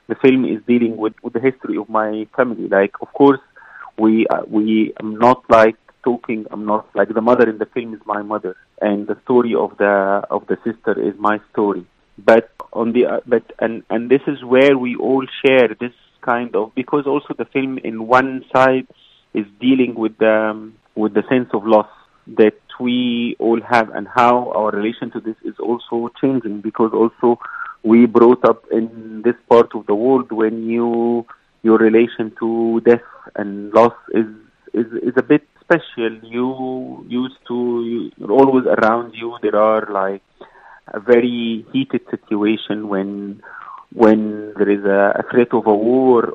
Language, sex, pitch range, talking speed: English, male, 110-125 Hz, 175 wpm